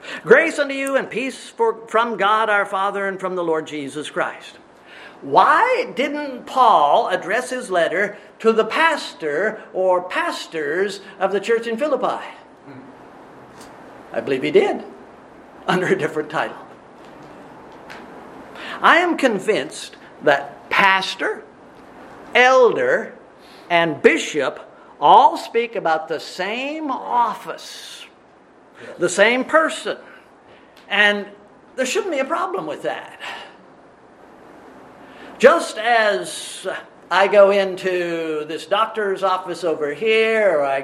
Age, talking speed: 50-69, 110 wpm